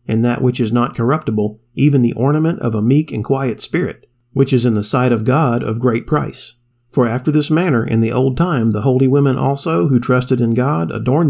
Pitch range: 115-140 Hz